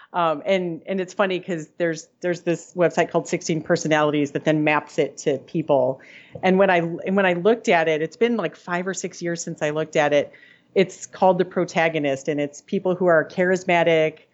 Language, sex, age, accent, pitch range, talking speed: English, female, 40-59, American, 155-195 Hz, 210 wpm